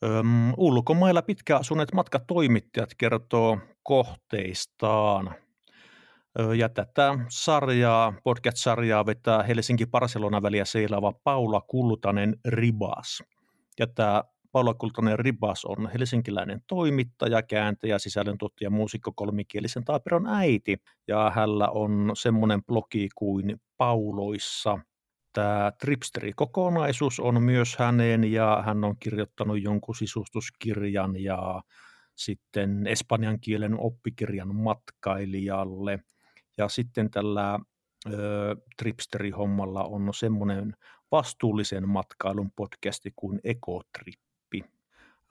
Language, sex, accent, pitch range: Finnish, male, native, 105-120 Hz